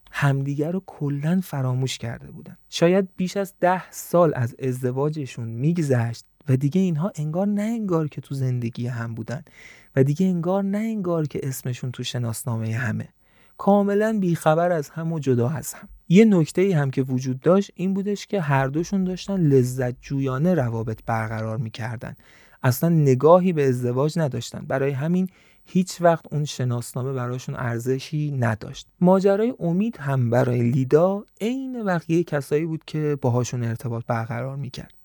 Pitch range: 120-170 Hz